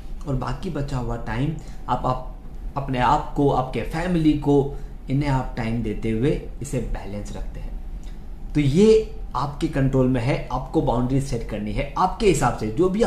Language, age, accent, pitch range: Hindi, 20-39, native, 130-165 Hz